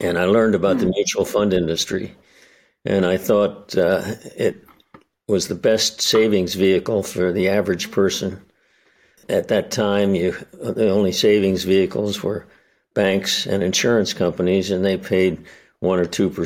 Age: 60-79